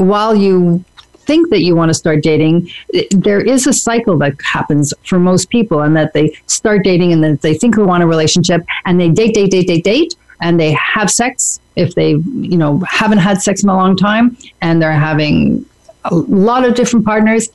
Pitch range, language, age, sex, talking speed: 160-215 Hz, English, 40-59, female, 210 wpm